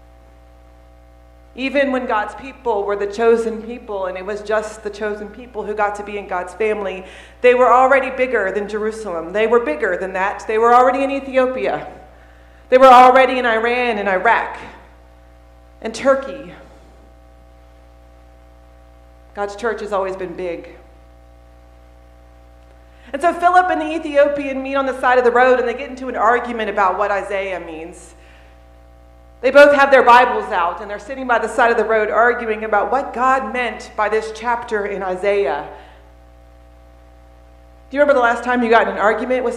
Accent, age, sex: American, 40-59, female